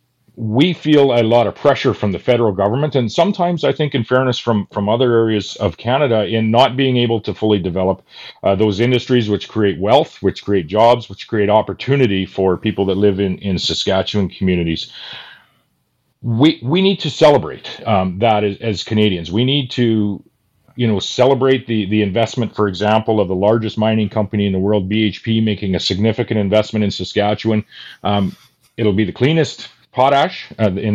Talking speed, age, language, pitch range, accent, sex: 180 wpm, 40-59, English, 105-125 Hz, American, male